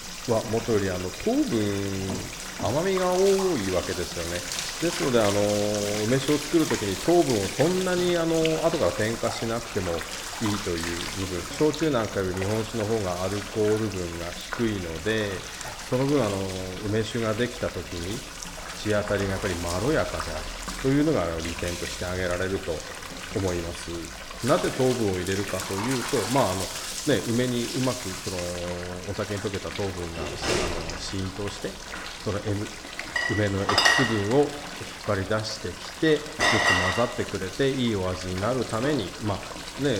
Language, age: Japanese, 40-59